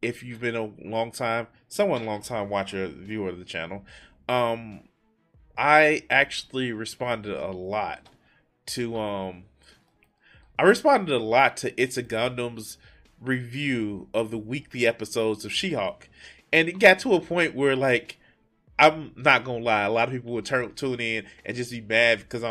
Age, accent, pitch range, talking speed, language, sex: 20-39, American, 110-150 Hz, 170 wpm, English, male